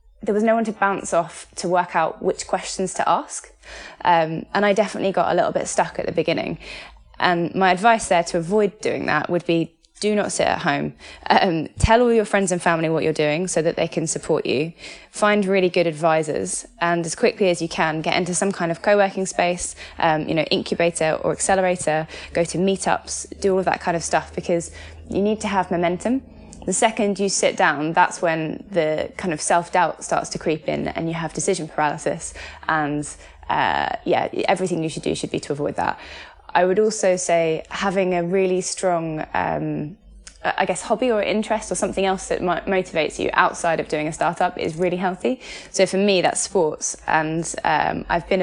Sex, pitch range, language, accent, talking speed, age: female, 160-195 Hz, English, British, 205 wpm, 20-39